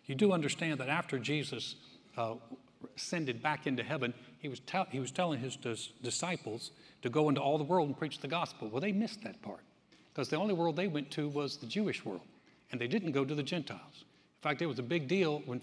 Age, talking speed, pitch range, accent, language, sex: 60-79, 235 wpm, 125-160 Hz, American, English, male